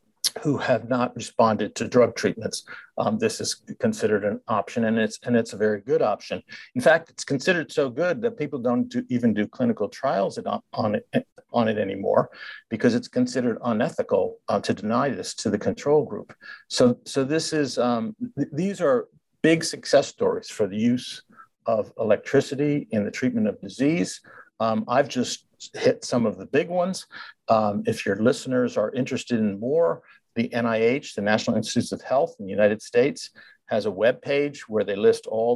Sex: male